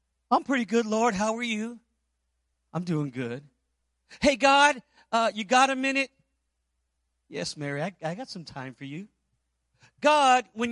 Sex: male